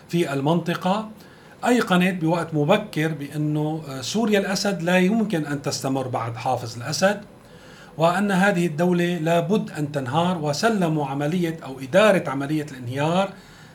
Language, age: Arabic, 40-59